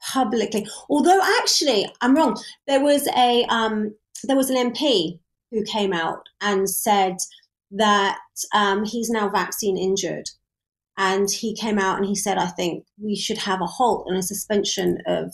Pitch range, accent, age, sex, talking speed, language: 200-260 Hz, British, 30-49, female, 165 wpm, English